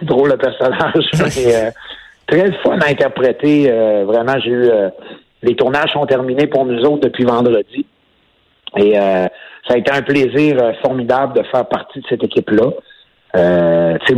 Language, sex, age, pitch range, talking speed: French, male, 60-79, 110-140 Hz, 165 wpm